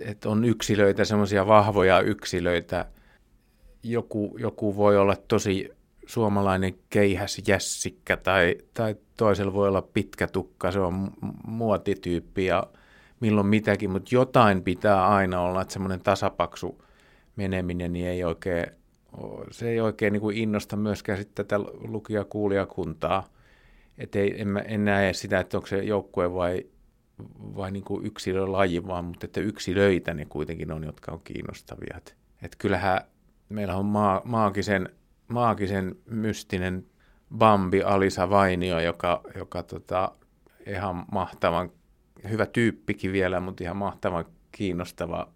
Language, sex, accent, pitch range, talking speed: Finnish, male, native, 90-105 Hz, 120 wpm